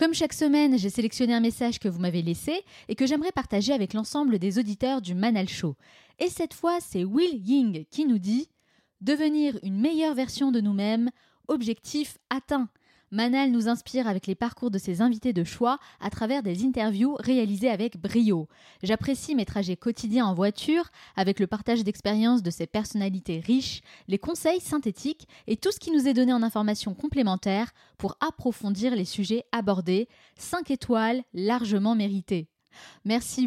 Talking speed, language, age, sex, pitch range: 170 wpm, French, 20-39, female, 205-270 Hz